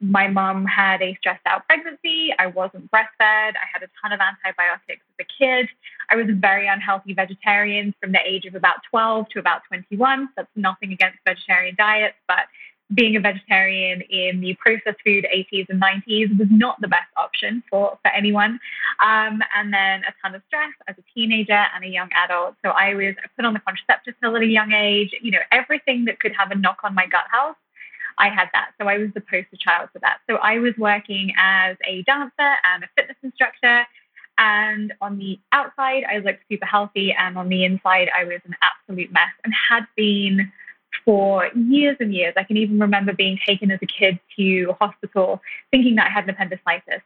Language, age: English, 10-29